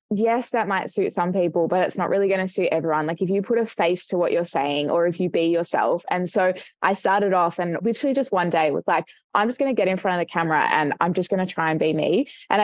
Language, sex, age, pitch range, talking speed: English, female, 20-39, 170-205 Hz, 290 wpm